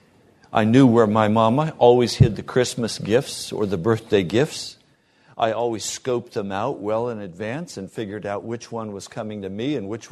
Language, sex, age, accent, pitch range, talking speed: English, male, 60-79, American, 110-140 Hz, 195 wpm